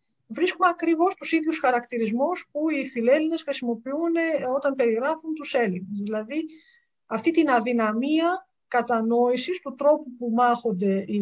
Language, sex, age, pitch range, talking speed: Greek, female, 50-69, 210-295 Hz, 125 wpm